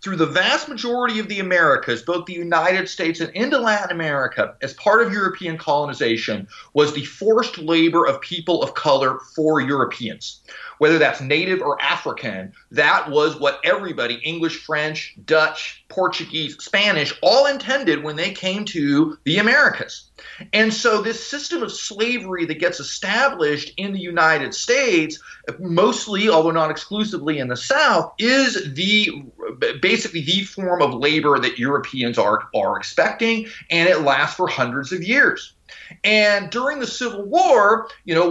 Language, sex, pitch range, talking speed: English, male, 145-205 Hz, 155 wpm